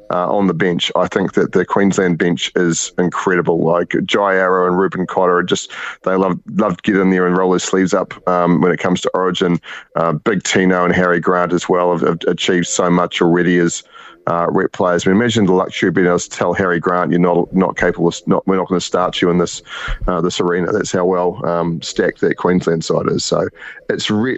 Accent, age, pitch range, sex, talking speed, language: Australian, 30-49, 85-95 Hz, male, 235 wpm, English